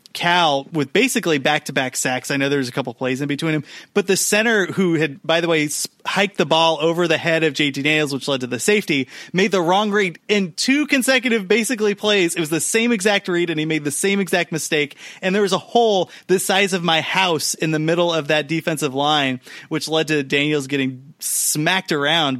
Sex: male